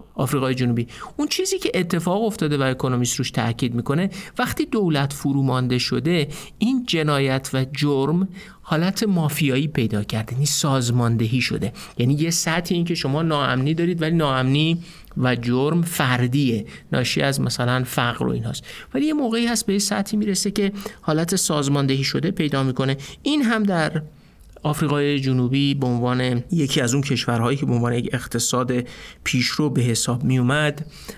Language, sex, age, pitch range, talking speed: Persian, male, 50-69, 125-165 Hz, 155 wpm